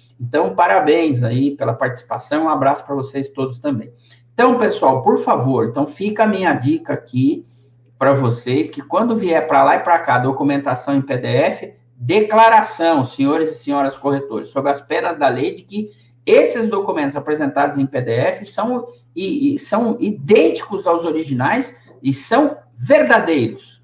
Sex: male